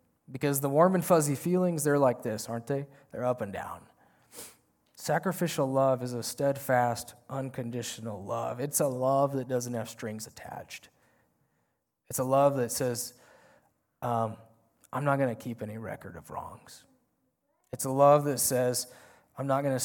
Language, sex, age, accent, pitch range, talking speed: English, male, 20-39, American, 120-145 Hz, 165 wpm